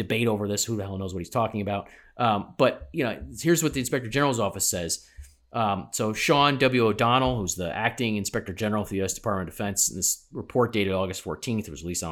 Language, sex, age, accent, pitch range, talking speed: English, male, 30-49, American, 100-130 Hz, 240 wpm